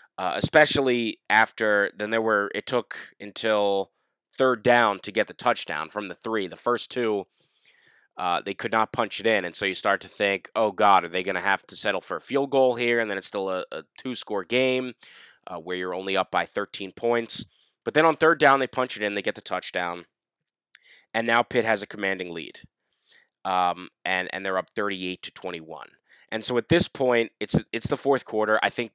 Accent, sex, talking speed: American, male, 215 wpm